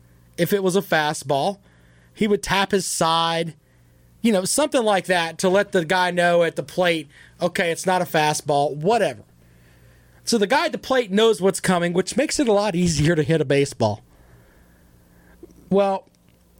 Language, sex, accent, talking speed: English, male, American, 175 wpm